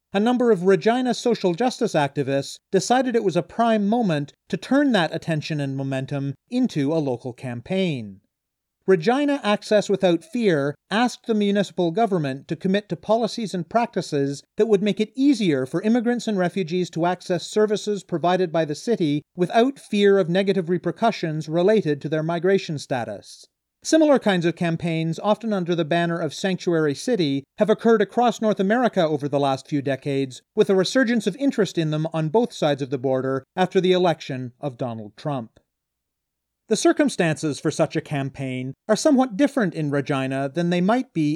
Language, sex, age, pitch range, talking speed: English, male, 40-59, 150-215 Hz, 170 wpm